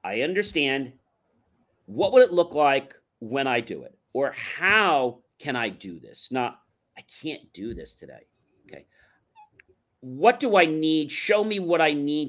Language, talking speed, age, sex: English, 160 wpm, 40-59, male